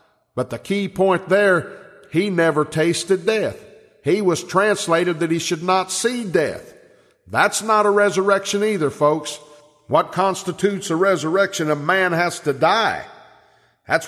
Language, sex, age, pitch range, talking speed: English, male, 50-69, 155-205 Hz, 145 wpm